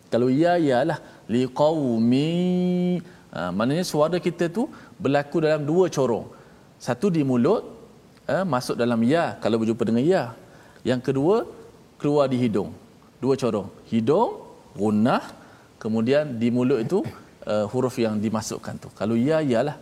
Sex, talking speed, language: male, 140 wpm, Malayalam